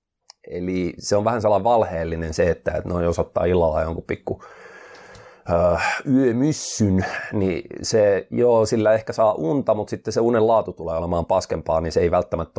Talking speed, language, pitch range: 160 wpm, Finnish, 90-120 Hz